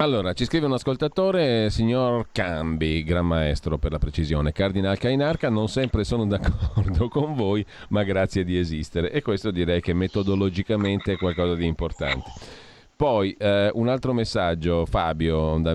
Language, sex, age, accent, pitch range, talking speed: Italian, male, 40-59, native, 85-110 Hz, 150 wpm